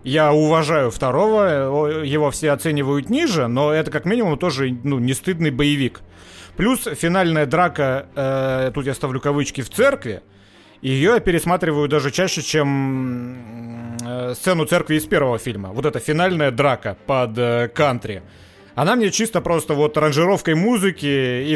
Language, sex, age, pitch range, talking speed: Russian, male, 30-49, 130-170 Hz, 145 wpm